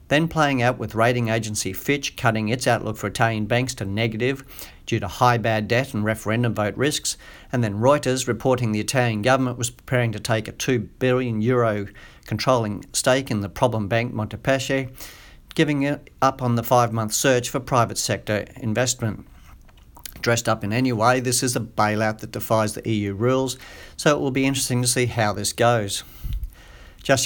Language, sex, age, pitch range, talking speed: English, male, 50-69, 110-130 Hz, 175 wpm